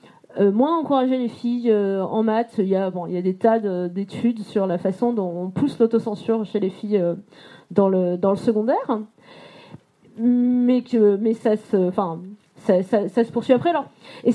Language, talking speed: French, 190 wpm